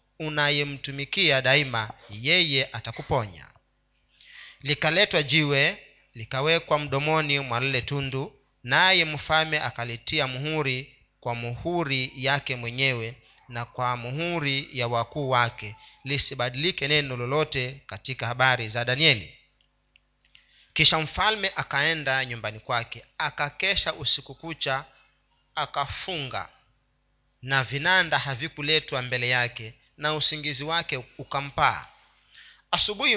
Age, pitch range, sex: 40-59, 130-155 Hz, male